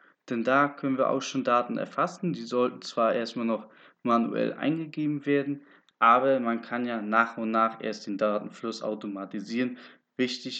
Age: 20-39